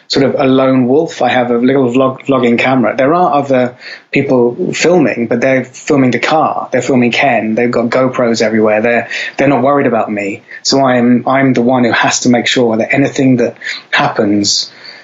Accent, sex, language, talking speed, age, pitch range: British, male, English, 190 wpm, 20-39, 120-135 Hz